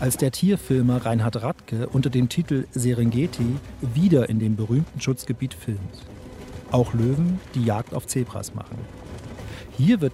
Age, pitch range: 40-59, 110-155 Hz